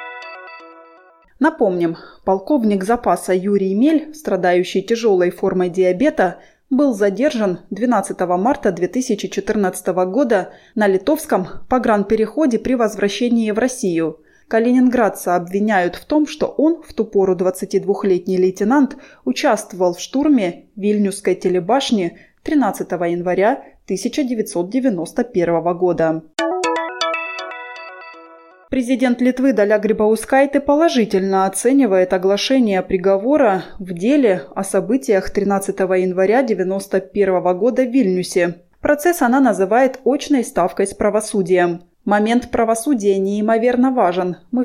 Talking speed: 95 wpm